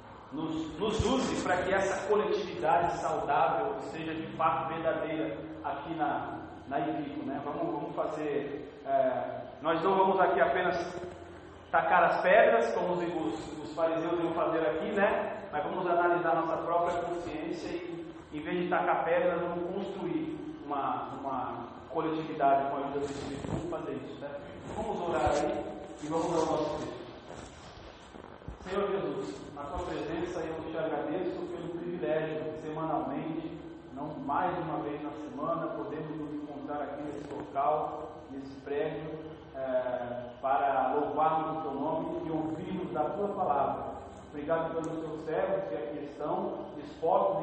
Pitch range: 150-180 Hz